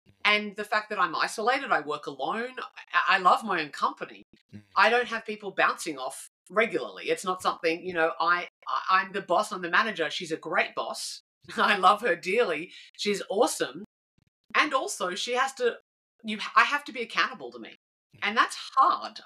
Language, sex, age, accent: English, female, 30-49, Australian